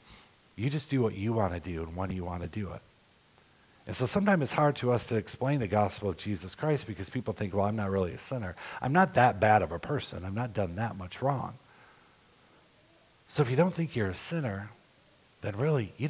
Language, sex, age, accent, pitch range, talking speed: English, male, 50-69, American, 95-125 Hz, 230 wpm